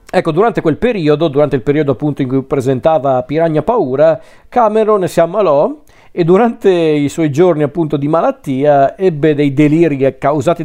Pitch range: 135-165 Hz